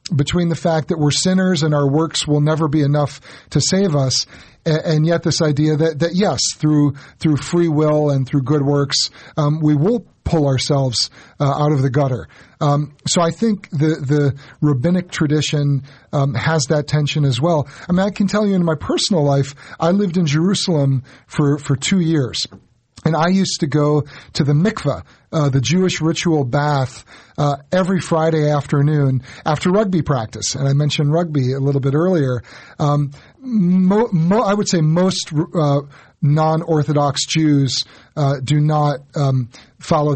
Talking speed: 175 wpm